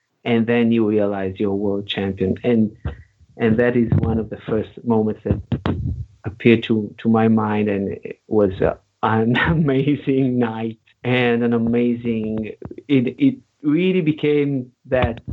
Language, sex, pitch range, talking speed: English, male, 110-130 Hz, 140 wpm